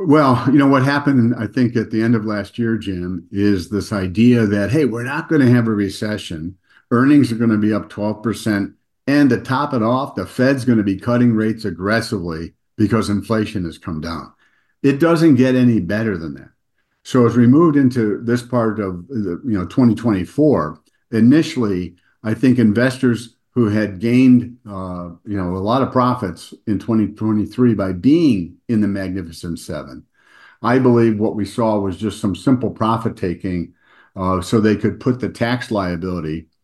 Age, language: 50-69, English